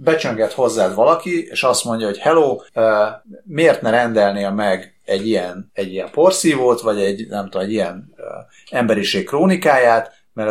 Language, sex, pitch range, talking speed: Hungarian, male, 105-150 Hz, 160 wpm